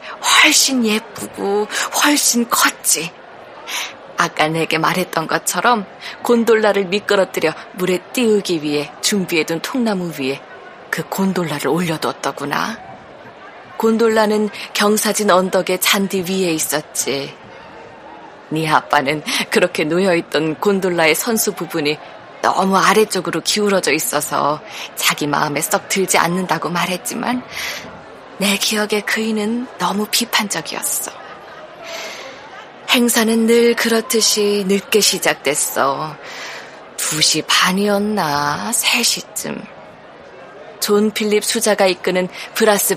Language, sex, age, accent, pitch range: Korean, female, 20-39, native, 165-215 Hz